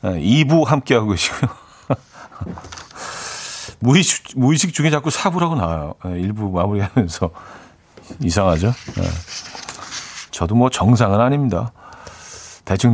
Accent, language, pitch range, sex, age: native, Korean, 100-140 Hz, male, 40-59